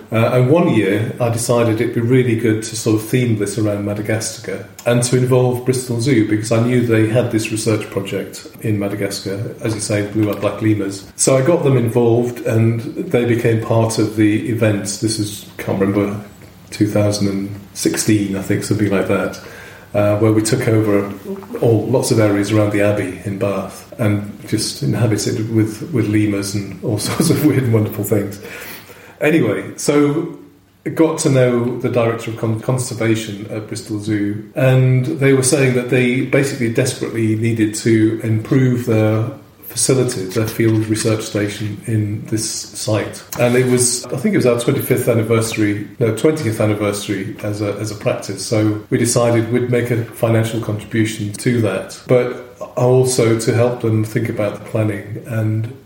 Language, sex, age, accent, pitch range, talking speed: English, male, 40-59, British, 105-120 Hz, 175 wpm